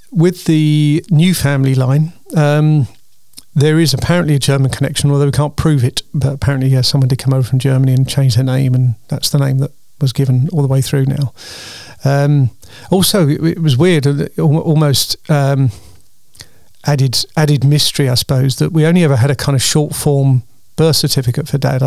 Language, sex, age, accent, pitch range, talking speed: English, male, 40-59, British, 130-150 Hz, 190 wpm